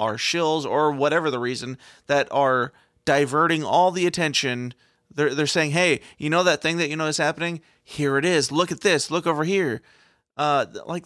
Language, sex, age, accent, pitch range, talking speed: English, male, 30-49, American, 135-165 Hz, 195 wpm